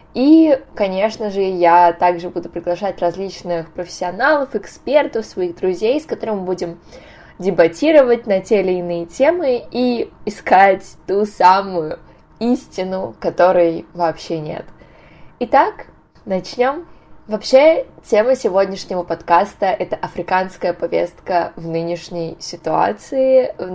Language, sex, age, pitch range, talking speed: Russian, female, 20-39, 175-225 Hz, 110 wpm